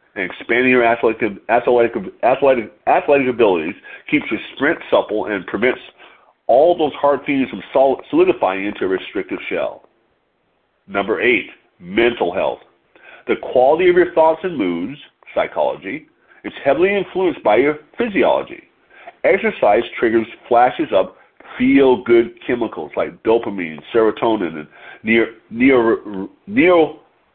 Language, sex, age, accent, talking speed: English, male, 40-59, American, 115 wpm